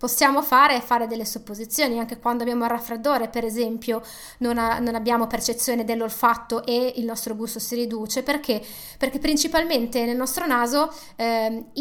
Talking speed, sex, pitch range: 160 wpm, female, 230-275 Hz